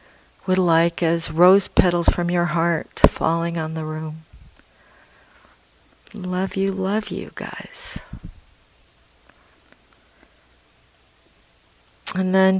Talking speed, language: 90 wpm, English